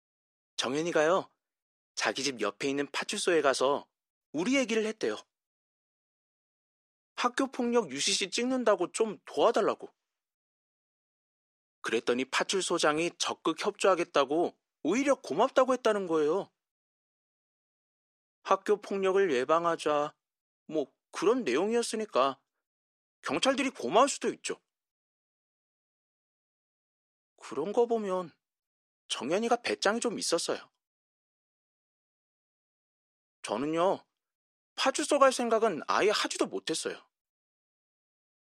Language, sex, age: Korean, male, 30-49